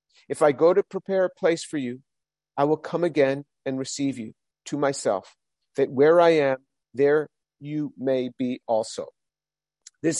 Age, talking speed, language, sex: 50-69, 165 wpm, English, male